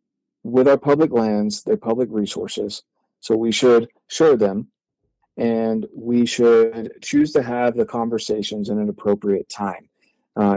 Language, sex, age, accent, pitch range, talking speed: English, male, 40-59, American, 105-125 Hz, 140 wpm